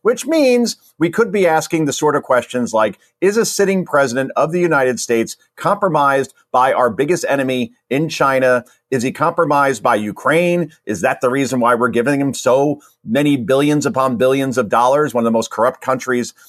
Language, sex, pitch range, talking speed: English, male, 120-155 Hz, 190 wpm